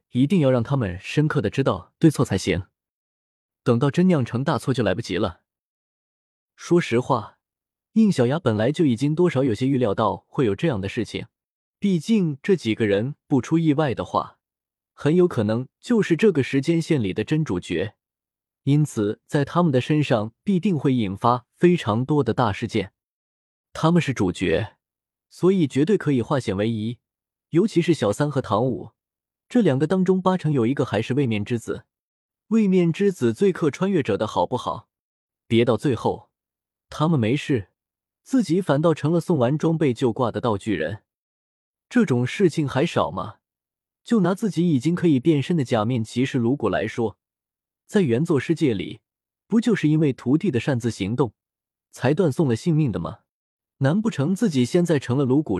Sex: male